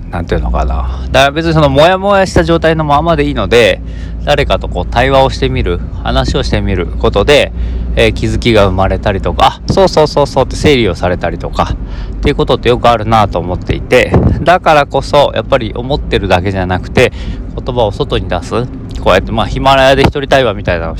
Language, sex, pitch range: Japanese, male, 90-125 Hz